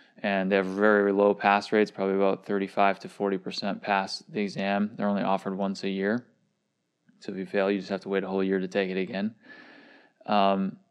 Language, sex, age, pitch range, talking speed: English, male, 20-39, 100-110 Hz, 210 wpm